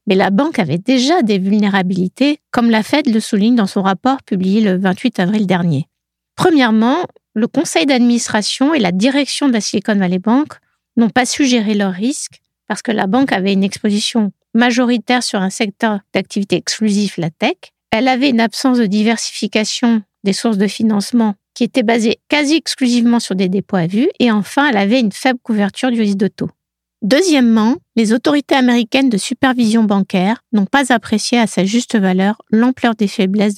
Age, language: 50-69, French